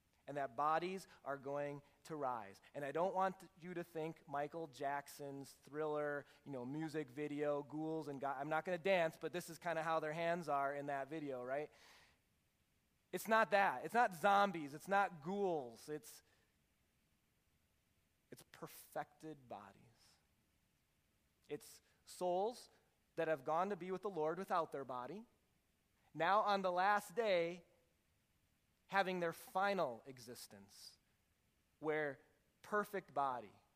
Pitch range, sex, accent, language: 125-165 Hz, male, American, English